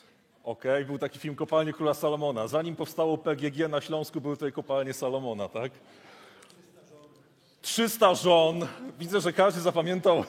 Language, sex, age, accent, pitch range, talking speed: Polish, male, 30-49, native, 150-180 Hz, 135 wpm